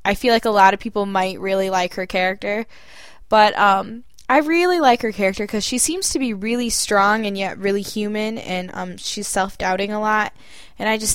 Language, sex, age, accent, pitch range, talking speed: English, female, 10-29, American, 185-215 Hz, 210 wpm